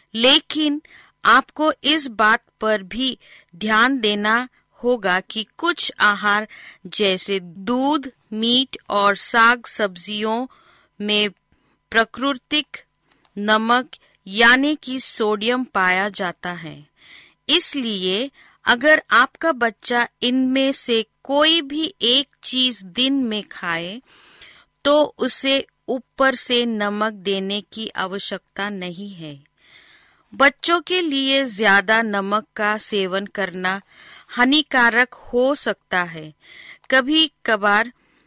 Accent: native